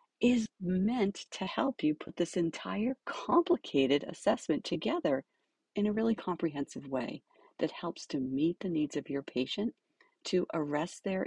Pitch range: 140-215 Hz